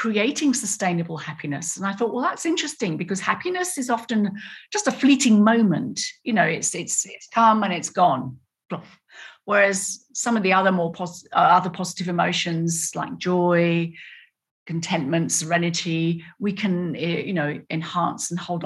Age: 50-69